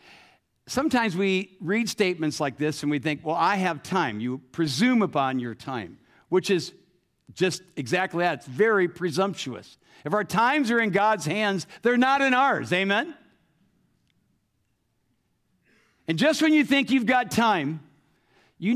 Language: English